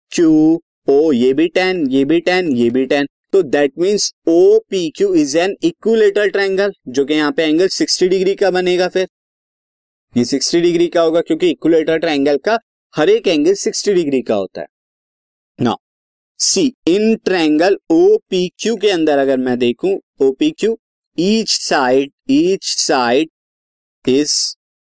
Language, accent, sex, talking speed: Hindi, native, male, 160 wpm